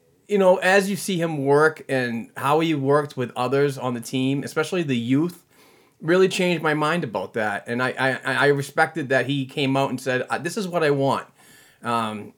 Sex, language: male, English